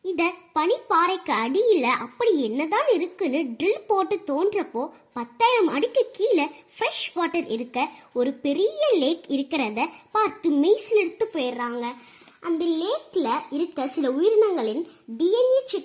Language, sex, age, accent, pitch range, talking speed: Tamil, male, 20-39, native, 260-400 Hz, 90 wpm